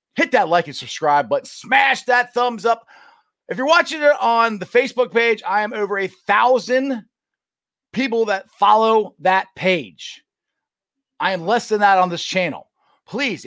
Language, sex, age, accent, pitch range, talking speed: English, male, 30-49, American, 165-240 Hz, 165 wpm